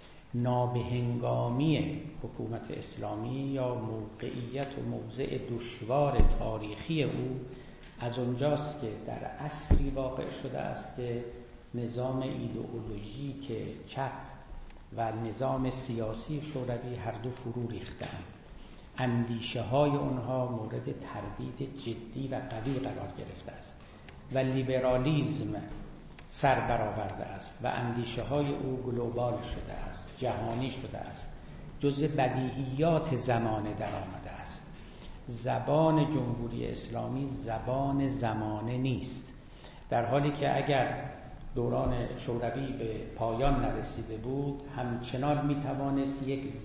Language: Persian